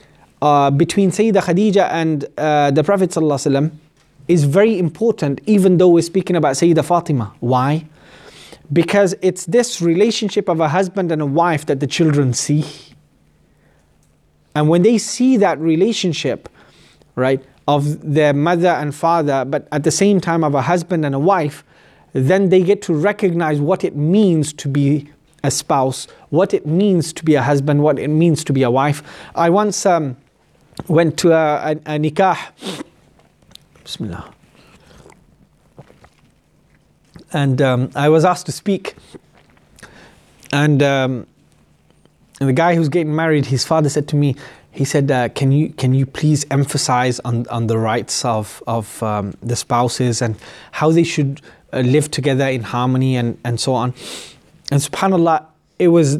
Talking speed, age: 155 wpm, 30-49